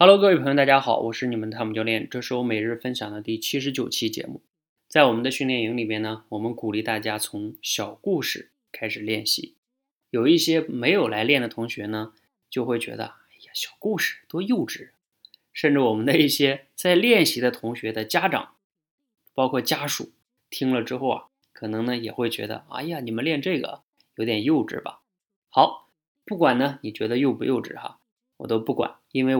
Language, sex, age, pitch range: Chinese, male, 20-39, 110-155 Hz